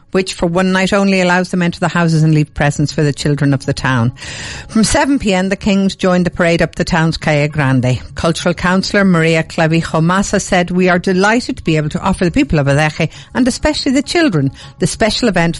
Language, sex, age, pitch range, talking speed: English, female, 50-69, 155-190 Hz, 215 wpm